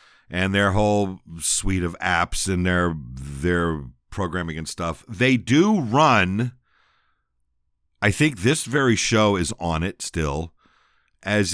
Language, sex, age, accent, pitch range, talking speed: English, male, 50-69, American, 80-125 Hz, 130 wpm